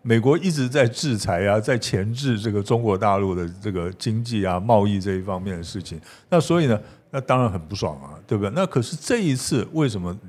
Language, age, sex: Chinese, 60-79, male